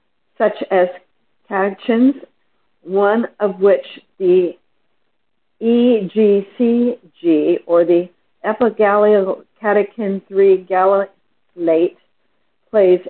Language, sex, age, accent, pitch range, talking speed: English, female, 50-69, American, 165-225 Hz, 55 wpm